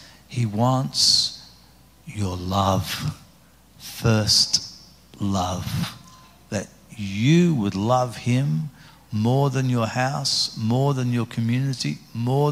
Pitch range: 105-125 Hz